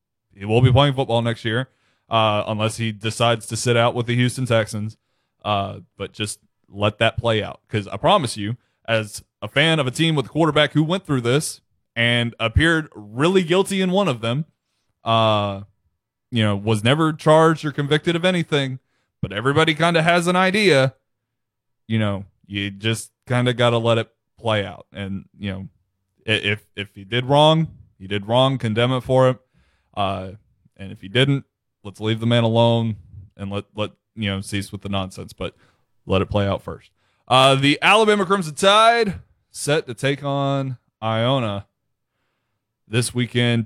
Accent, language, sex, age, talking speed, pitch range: American, English, male, 20-39, 180 wpm, 105-135 Hz